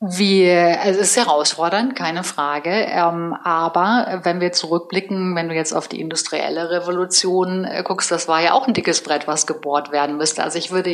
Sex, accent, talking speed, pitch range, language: female, German, 190 wpm, 170-200 Hz, German